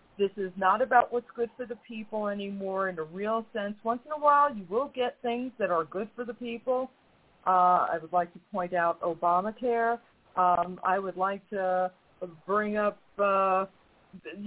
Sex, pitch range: female, 180-225 Hz